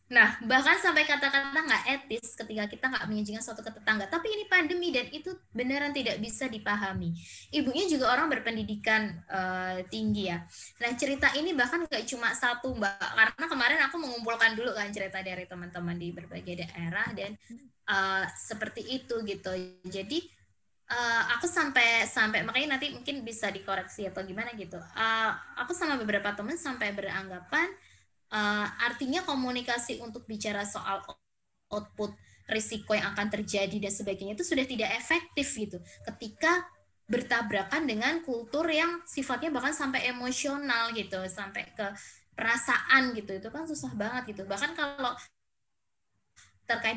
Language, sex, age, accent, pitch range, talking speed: Indonesian, female, 20-39, native, 205-280 Hz, 145 wpm